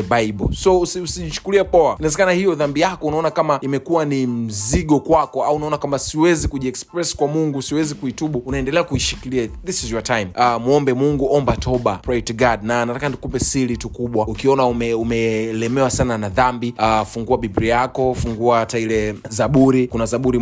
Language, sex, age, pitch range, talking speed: Swahili, male, 20-39, 115-135 Hz, 175 wpm